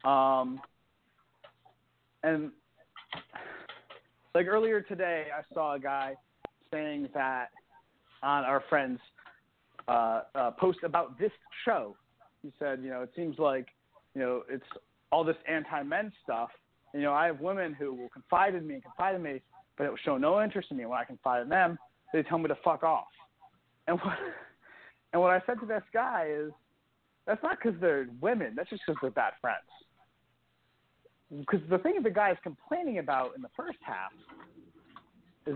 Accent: American